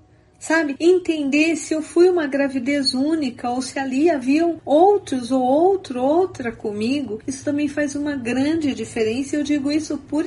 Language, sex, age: Portuguese, female, 40-59